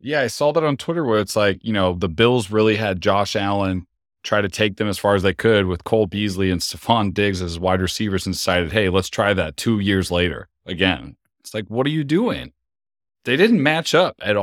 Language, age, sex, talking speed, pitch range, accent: English, 30-49, male, 235 wpm, 90-110 Hz, American